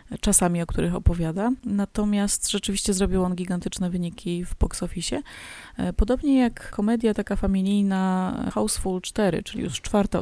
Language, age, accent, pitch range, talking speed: Polish, 20-39, native, 175-205 Hz, 135 wpm